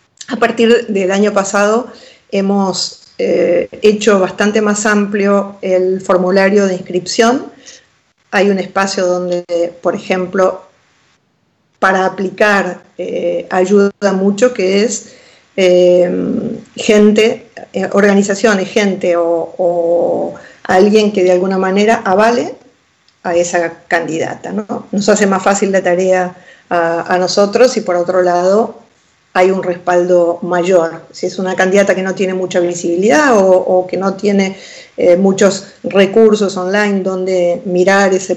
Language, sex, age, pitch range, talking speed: Spanish, female, 40-59, 180-210 Hz, 130 wpm